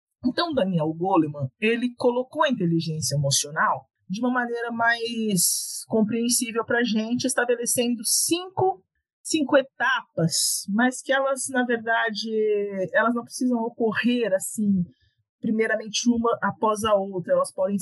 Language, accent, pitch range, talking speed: Portuguese, Brazilian, 185-255 Hz, 120 wpm